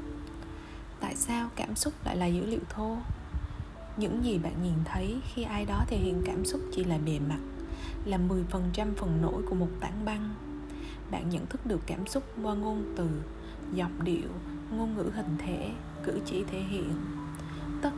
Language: Vietnamese